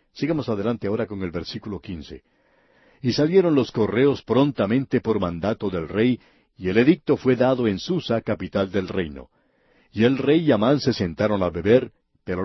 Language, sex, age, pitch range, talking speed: Spanish, male, 60-79, 105-145 Hz, 175 wpm